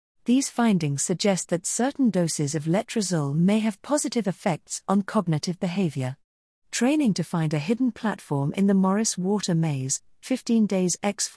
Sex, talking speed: female, 155 wpm